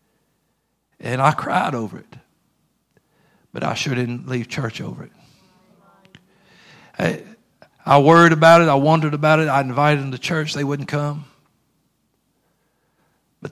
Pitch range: 135-165 Hz